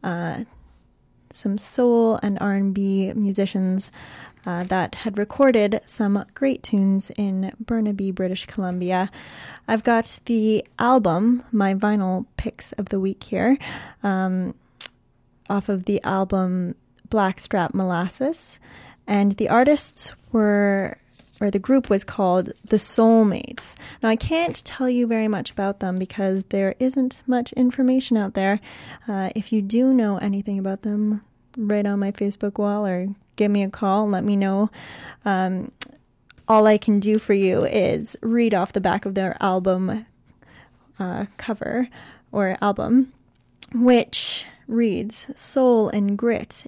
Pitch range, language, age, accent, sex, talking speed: 195-230 Hz, English, 10-29, American, female, 140 wpm